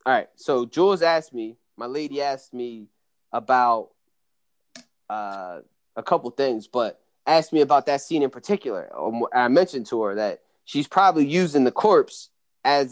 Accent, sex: American, male